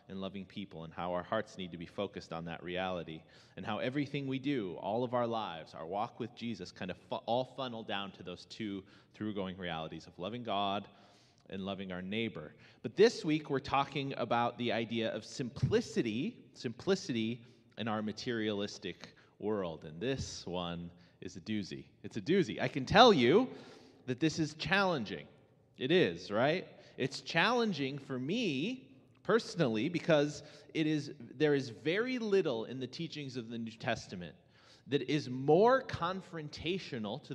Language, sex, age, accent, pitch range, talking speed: English, male, 30-49, American, 110-150 Hz, 165 wpm